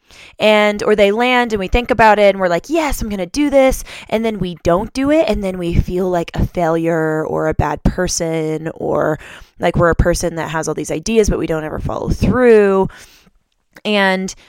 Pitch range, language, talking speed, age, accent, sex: 160-210 Hz, English, 215 wpm, 20-39, American, female